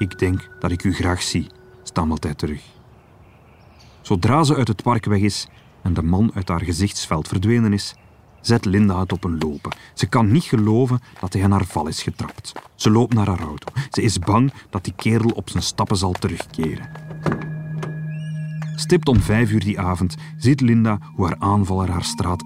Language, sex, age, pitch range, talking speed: Dutch, male, 40-59, 90-145 Hz, 190 wpm